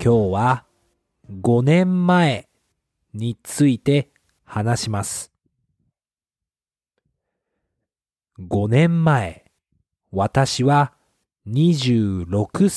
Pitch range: 110-160 Hz